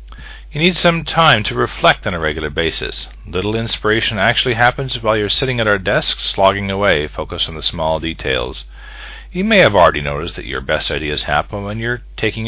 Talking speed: 190 wpm